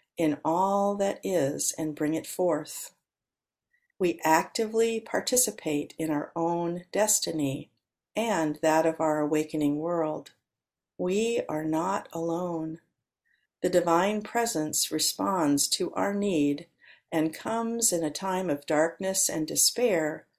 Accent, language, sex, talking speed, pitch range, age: American, English, female, 120 wpm, 150-200 Hz, 50-69